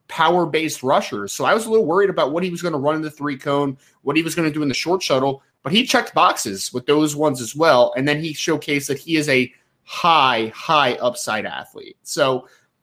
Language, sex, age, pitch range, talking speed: English, male, 20-39, 140-180 Hz, 235 wpm